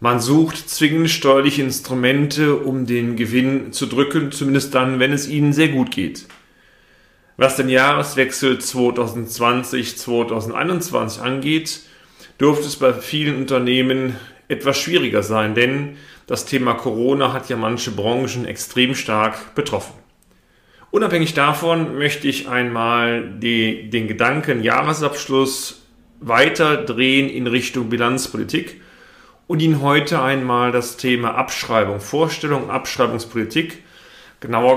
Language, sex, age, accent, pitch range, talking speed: German, male, 40-59, German, 120-145 Hz, 110 wpm